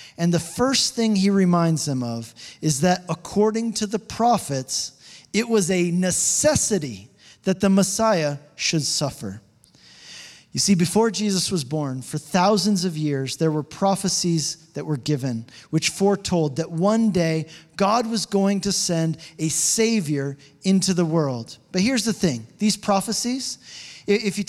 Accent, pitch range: American, 155-205 Hz